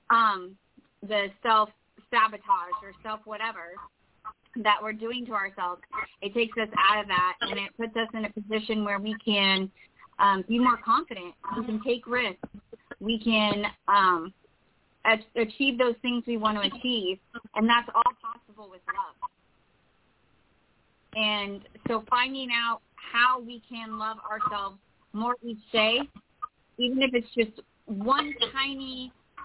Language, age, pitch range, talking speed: English, 30-49, 200-240 Hz, 140 wpm